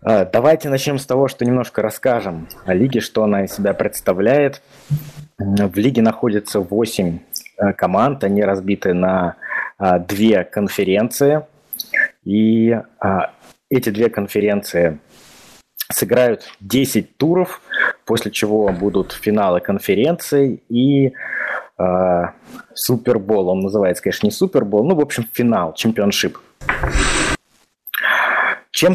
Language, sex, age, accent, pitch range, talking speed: Russian, male, 20-39, native, 100-135 Hz, 100 wpm